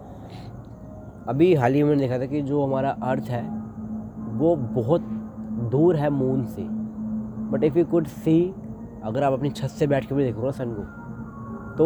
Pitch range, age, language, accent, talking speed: 110-145 Hz, 30-49, Hindi, native, 170 wpm